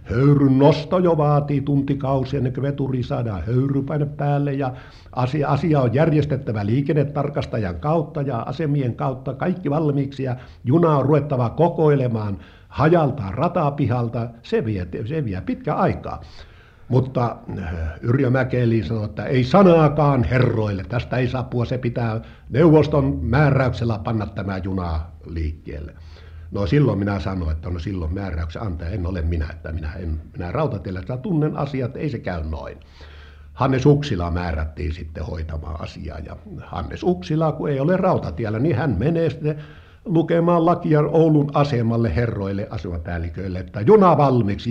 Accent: native